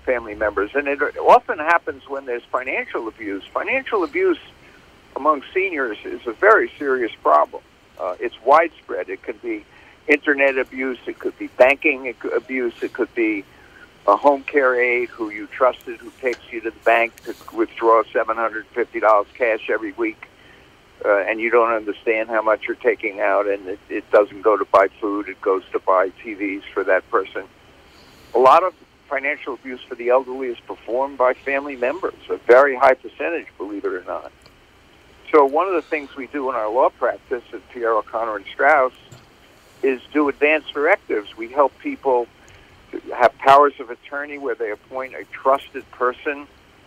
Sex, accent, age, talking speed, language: male, American, 60-79, 175 wpm, English